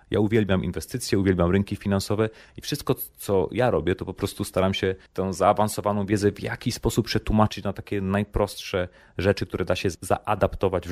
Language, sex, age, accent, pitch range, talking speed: Polish, male, 30-49, native, 90-105 Hz, 175 wpm